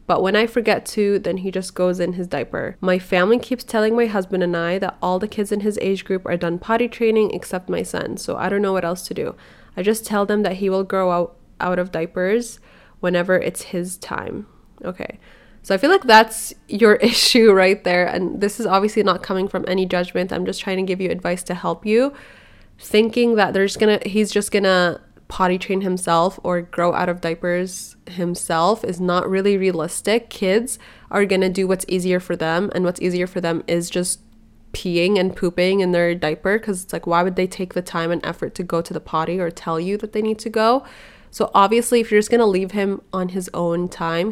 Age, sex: 20-39, female